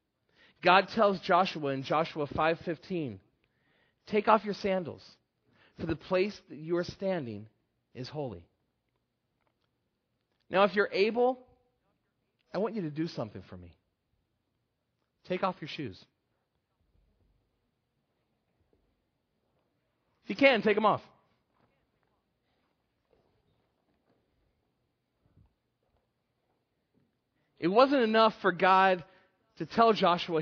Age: 40-59